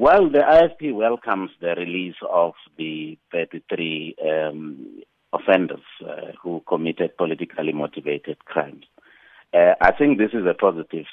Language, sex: English, male